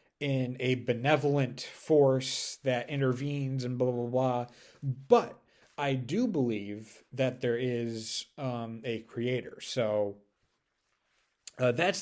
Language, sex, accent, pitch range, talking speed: English, male, American, 115-140 Hz, 115 wpm